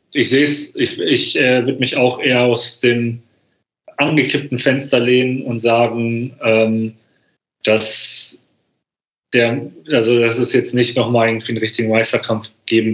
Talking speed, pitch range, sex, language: 145 wpm, 115-130 Hz, male, German